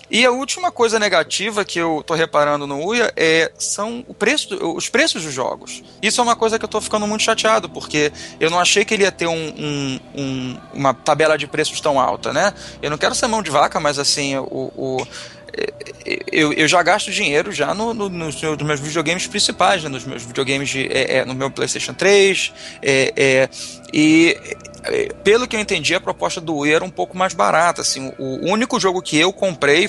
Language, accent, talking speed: Portuguese, Brazilian, 215 wpm